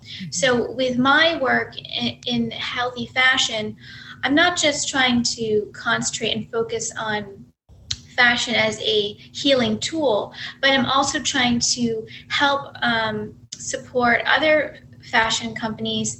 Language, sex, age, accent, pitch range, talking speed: English, female, 20-39, American, 210-255 Hz, 120 wpm